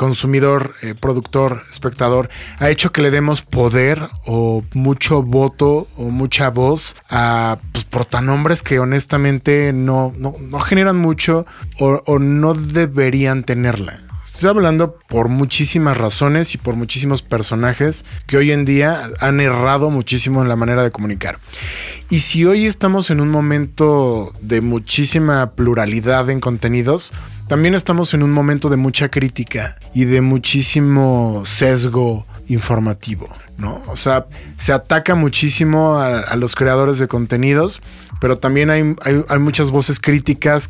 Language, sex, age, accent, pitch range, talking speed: Spanish, male, 30-49, Mexican, 120-145 Hz, 140 wpm